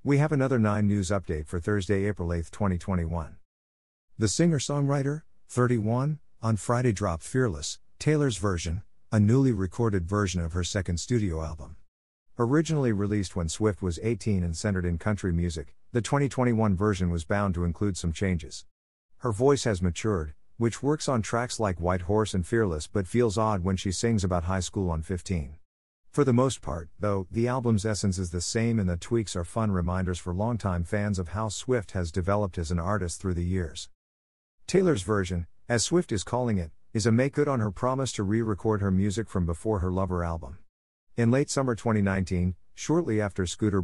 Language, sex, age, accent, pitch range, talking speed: English, male, 50-69, American, 90-115 Hz, 185 wpm